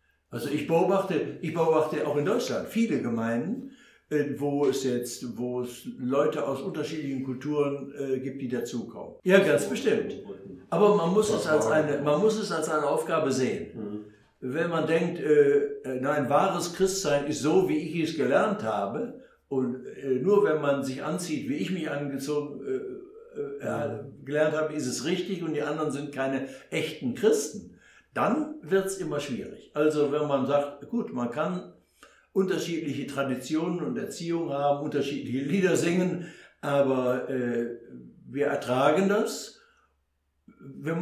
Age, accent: 60-79, German